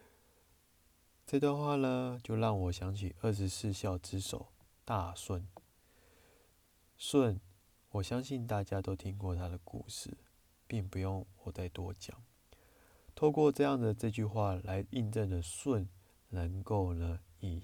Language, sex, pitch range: Chinese, male, 90-105 Hz